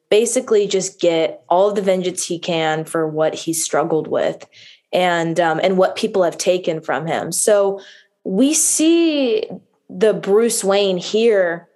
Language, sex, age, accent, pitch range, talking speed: English, female, 20-39, American, 170-205 Hz, 150 wpm